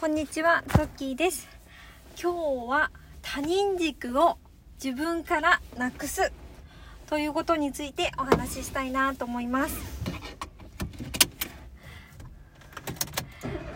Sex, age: female, 20-39